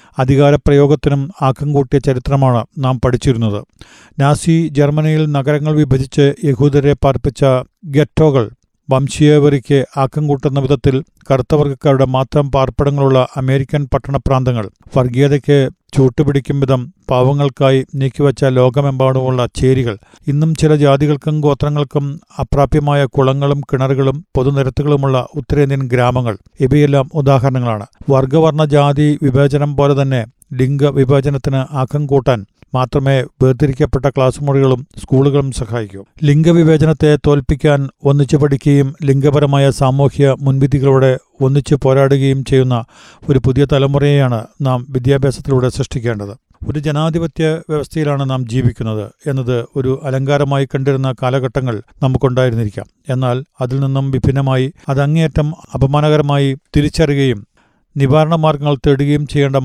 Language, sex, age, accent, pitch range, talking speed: Malayalam, male, 50-69, native, 130-145 Hz, 90 wpm